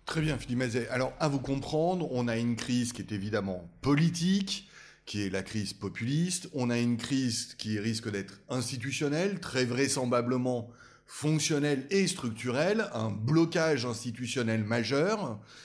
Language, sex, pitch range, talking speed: French, male, 115-155 Hz, 145 wpm